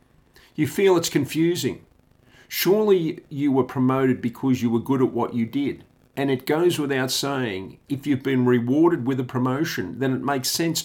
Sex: male